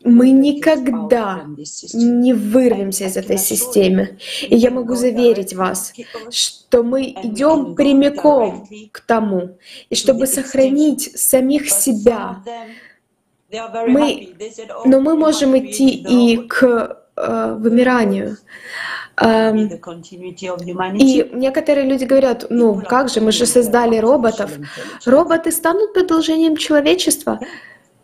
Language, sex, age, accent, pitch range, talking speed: Russian, female, 20-39, native, 230-290 Hz, 95 wpm